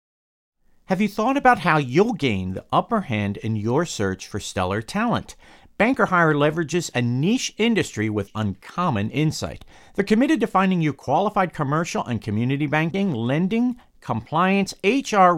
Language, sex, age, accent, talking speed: English, male, 50-69, American, 150 wpm